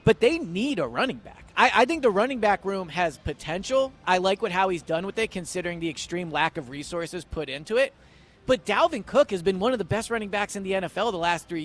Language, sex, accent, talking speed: English, male, American, 245 wpm